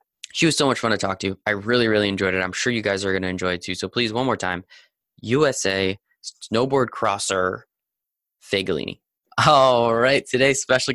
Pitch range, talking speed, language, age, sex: 100-125 Hz, 205 wpm, English, 10-29, male